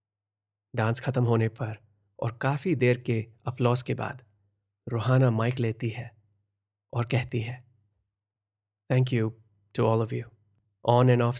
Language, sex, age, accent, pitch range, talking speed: Hindi, male, 30-49, native, 105-125 Hz, 140 wpm